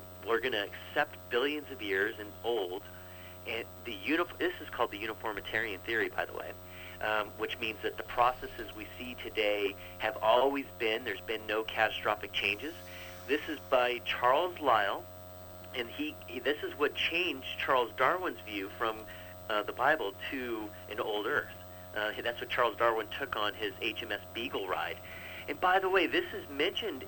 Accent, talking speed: American, 175 wpm